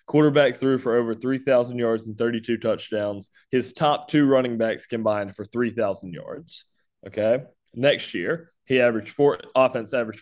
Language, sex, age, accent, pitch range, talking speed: English, male, 20-39, American, 115-135 Hz, 165 wpm